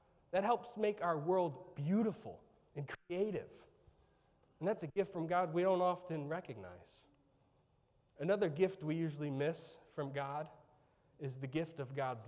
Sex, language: male, English